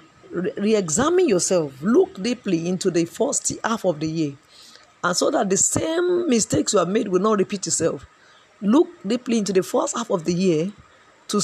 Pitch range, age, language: 175-220 Hz, 40-59, English